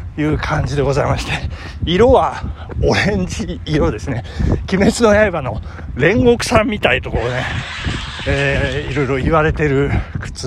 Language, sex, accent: Japanese, male, native